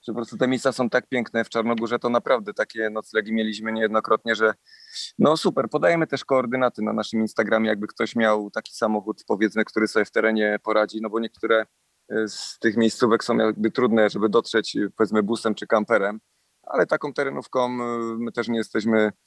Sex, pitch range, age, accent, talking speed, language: male, 110-125 Hz, 30-49, native, 180 wpm, Polish